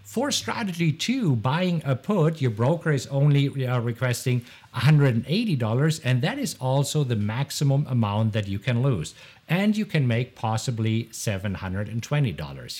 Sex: male